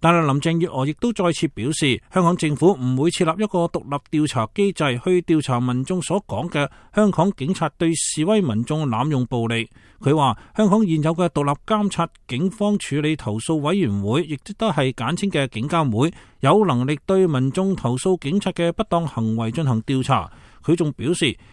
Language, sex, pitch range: English, male, 130-180 Hz